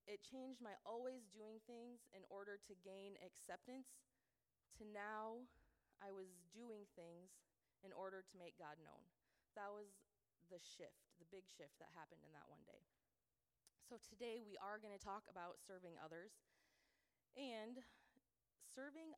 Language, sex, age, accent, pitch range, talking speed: English, female, 20-39, American, 170-205 Hz, 150 wpm